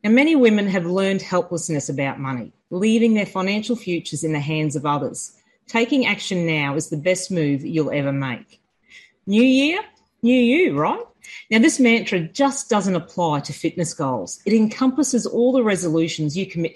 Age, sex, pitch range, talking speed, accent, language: 40-59, female, 165-240 Hz, 170 wpm, Australian, English